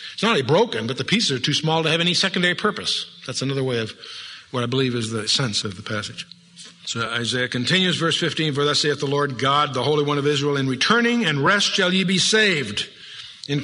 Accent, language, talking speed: American, English, 235 wpm